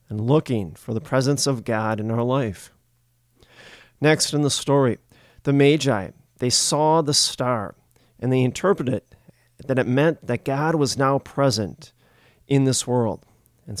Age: 40-59